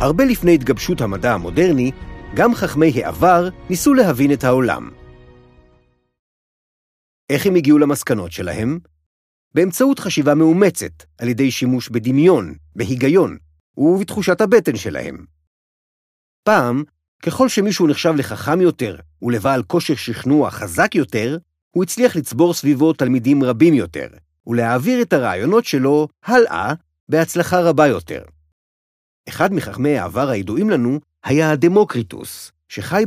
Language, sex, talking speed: Hebrew, male, 115 wpm